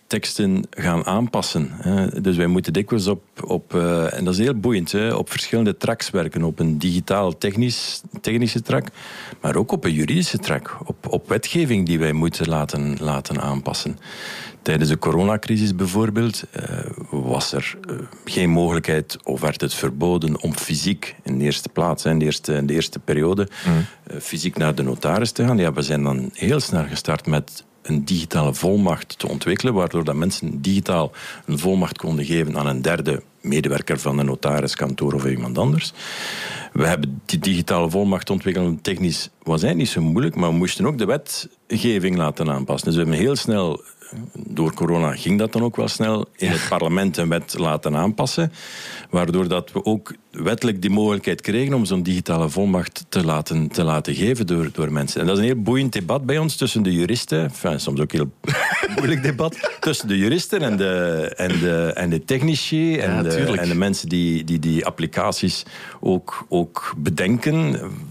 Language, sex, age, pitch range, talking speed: English, male, 50-69, 80-105 Hz, 175 wpm